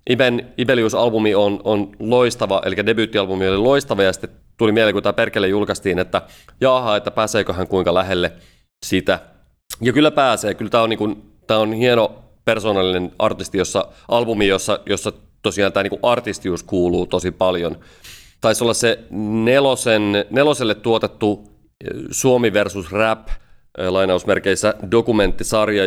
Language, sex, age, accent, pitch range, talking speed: Finnish, male, 30-49, native, 95-115 Hz, 135 wpm